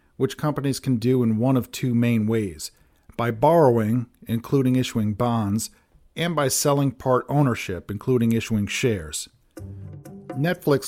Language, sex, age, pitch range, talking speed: English, male, 40-59, 110-135 Hz, 130 wpm